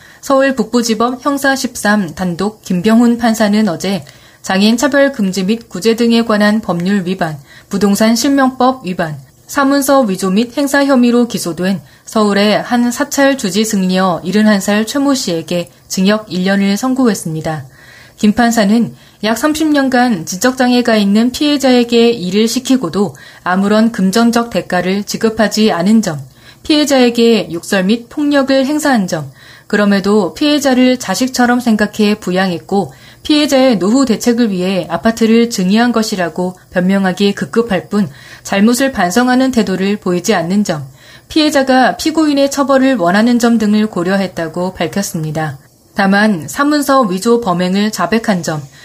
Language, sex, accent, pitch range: Korean, female, native, 185-245 Hz